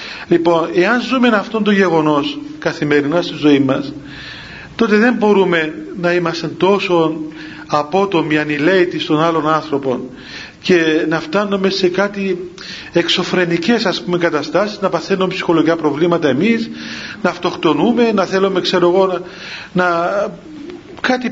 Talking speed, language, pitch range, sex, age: 125 wpm, Greek, 175-245 Hz, male, 40-59